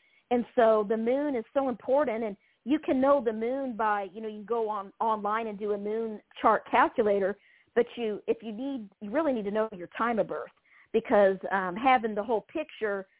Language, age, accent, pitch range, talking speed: English, 50-69, American, 215-265 Hz, 210 wpm